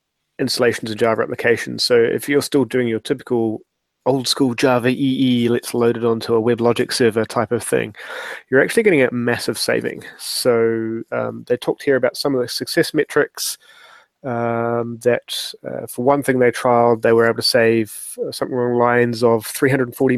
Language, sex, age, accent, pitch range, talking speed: English, male, 20-39, British, 115-130 Hz, 185 wpm